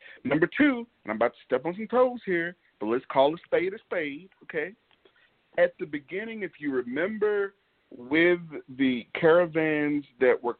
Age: 40-59